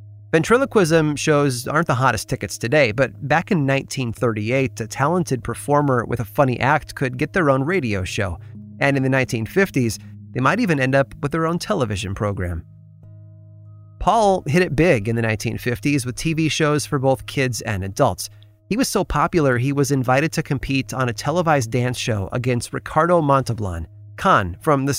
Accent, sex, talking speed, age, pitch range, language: American, male, 175 wpm, 30-49, 110-150 Hz, English